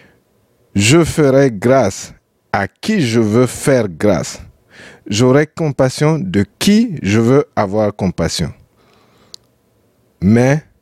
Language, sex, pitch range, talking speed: French, male, 105-145 Hz, 100 wpm